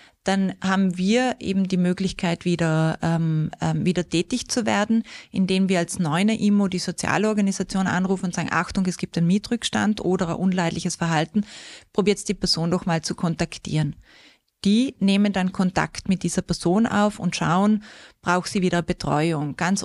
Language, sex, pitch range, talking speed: German, female, 170-195 Hz, 160 wpm